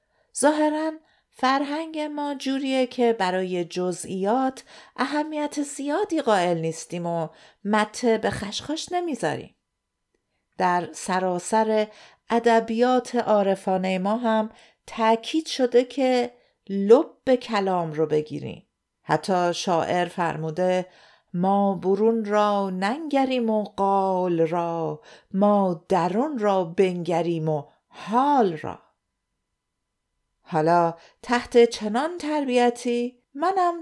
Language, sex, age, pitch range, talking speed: Persian, female, 50-69, 185-255 Hz, 90 wpm